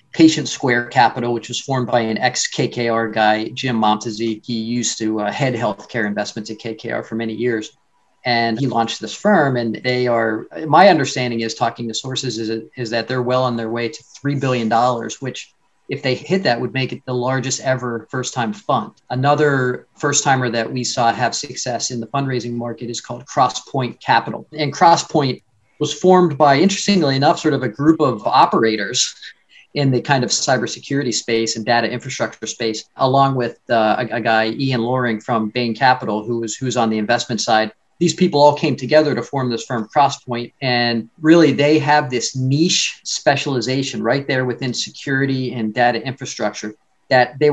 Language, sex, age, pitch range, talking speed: English, male, 40-59, 115-140 Hz, 185 wpm